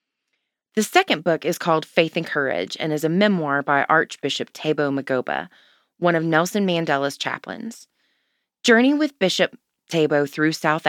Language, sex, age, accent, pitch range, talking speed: English, female, 20-39, American, 145-195 Hz, 150 wpm